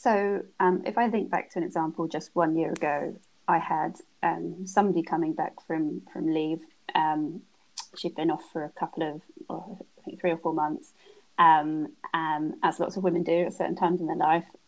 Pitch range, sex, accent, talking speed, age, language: 160-185 Hz, female, British, 205 wpm, 30-49, English